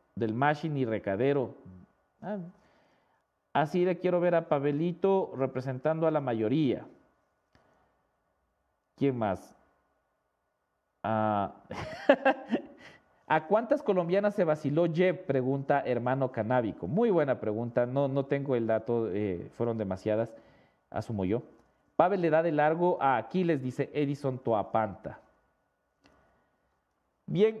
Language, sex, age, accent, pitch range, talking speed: English, male, 40-59, Mexican, 120-175 Hz, 115 wpm